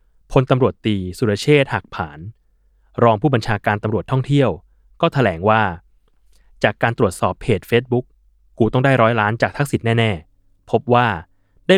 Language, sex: Thai, male